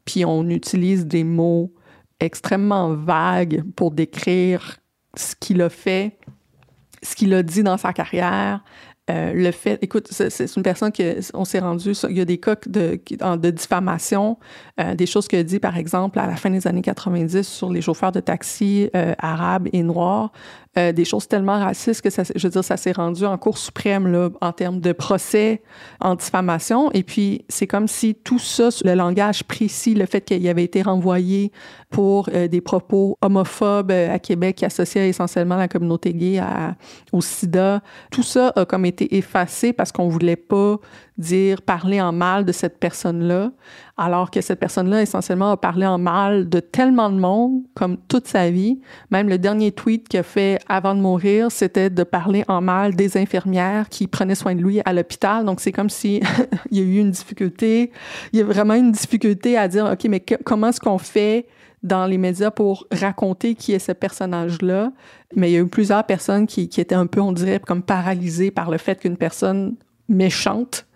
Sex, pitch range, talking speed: female, 180-205 Hz, 195 wpm